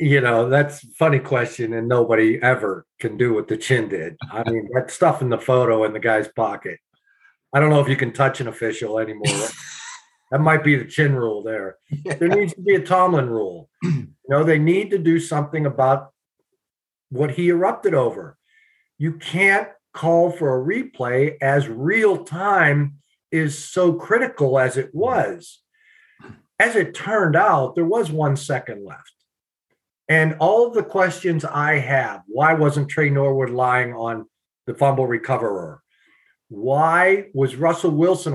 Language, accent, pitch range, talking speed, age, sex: English, American, 135-185 Hz, 165 wpm, 50-69, male